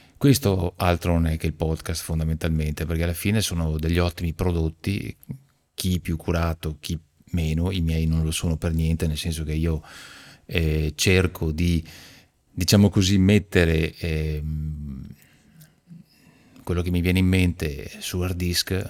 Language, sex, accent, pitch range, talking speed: Italian, male, native, 80-95 Hz, 150 wpm